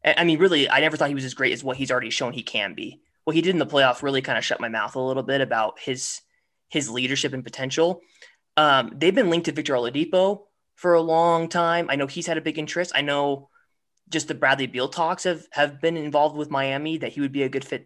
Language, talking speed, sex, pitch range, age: English, 260 wpm, male, 130-160 Hz, 20-39